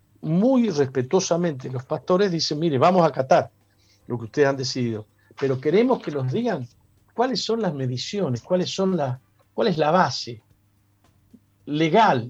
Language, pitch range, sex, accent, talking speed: Spanish, 115-150 Hz, male, Argentinian, 150 wpm